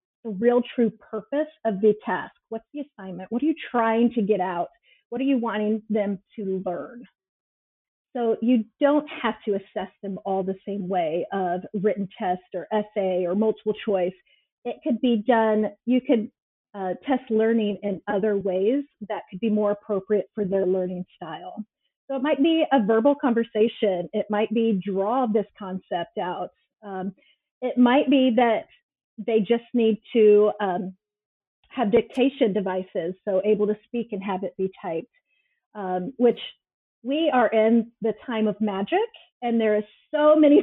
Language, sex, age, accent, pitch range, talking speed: English, female, 30-49, American, 200-250 Hz, 170 wpm